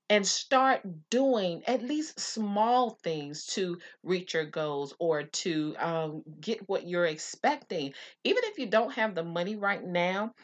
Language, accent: English, American